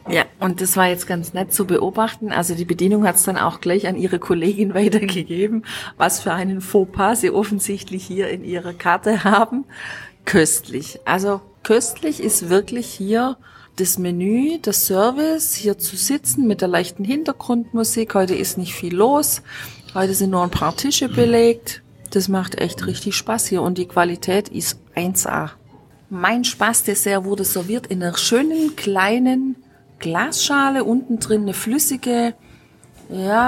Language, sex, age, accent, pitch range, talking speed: German, female, 40-59, German, 190-240 Hz, 155 wpm